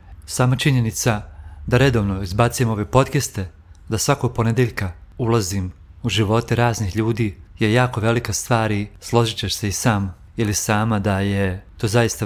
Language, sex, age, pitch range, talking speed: Croatian, male, 40-59, 95-120 Hz, 140 wpm